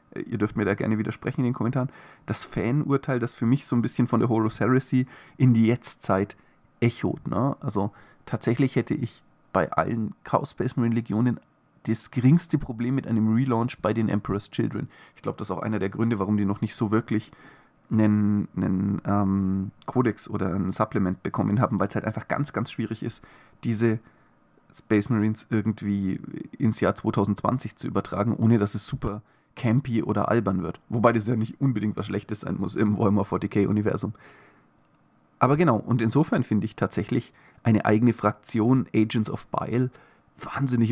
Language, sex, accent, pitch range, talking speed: German, male, German, 105-125 Hz, 175 wpm